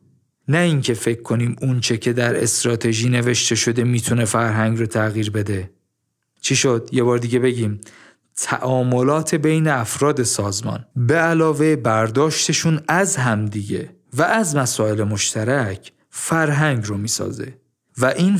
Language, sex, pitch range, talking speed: Persian, male, 110-150 Hz, 125 wpm